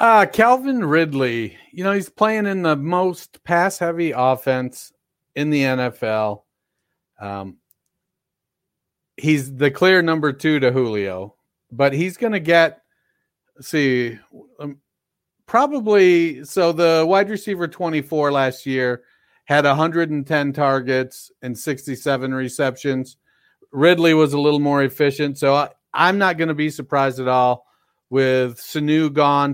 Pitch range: 130-165 Hz